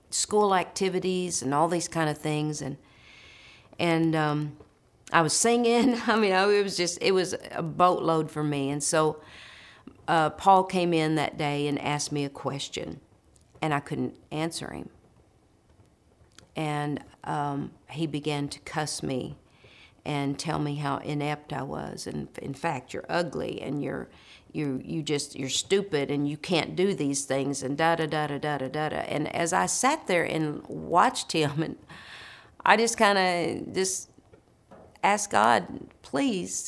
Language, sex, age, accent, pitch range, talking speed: English, female, 50-69, American, 145-180 Hz, 165 wpm